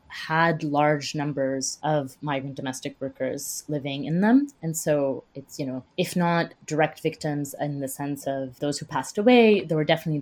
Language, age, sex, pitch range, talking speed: English, 20-39, female, 140-165 Hz, 175 wpm